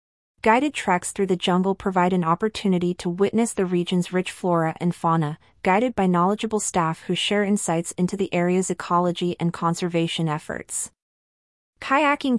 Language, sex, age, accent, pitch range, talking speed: English, female, 30-49, American, 170-205 Hz, 150 wpm